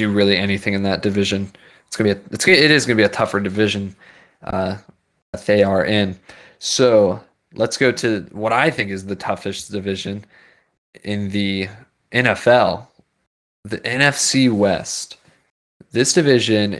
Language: English